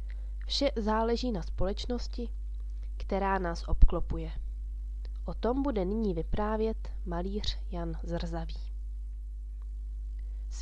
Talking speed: 90 wpm